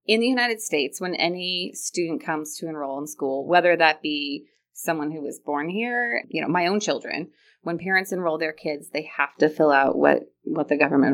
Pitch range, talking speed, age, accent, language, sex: 155-195 Hz, 210 wpm, 30-49, American, English, female